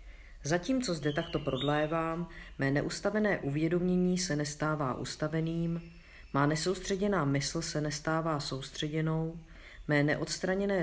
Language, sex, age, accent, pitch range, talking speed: Czech, female, 40-59, native, 145-175 Hz, 100 wpm